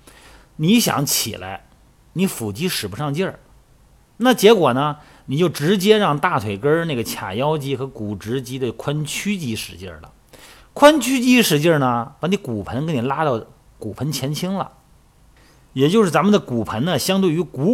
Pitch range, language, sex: 110-175 Hz, Chinese, male